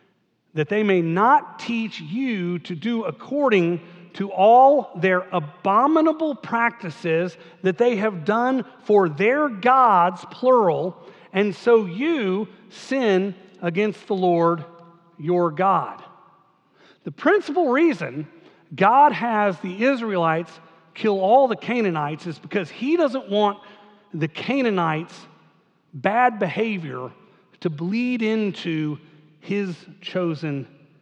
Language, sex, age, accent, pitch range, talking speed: English, male, 40-59, American, 155-205 Hz, 110 wpm